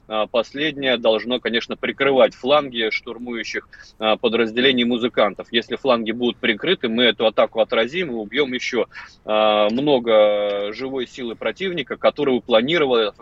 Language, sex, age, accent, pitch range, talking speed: Russian, male, 30-49, native, 110-130 Hz, 115 wpm